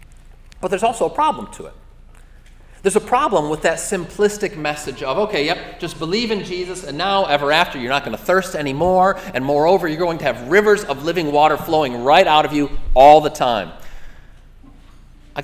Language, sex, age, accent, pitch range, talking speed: English, male, 40-59, American, 120-180 Hz, 195 wpm